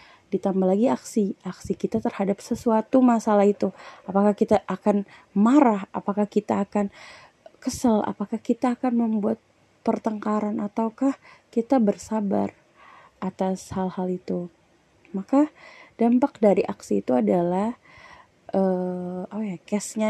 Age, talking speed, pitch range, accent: 20-39, 110 wpm, 185-235 Hz, native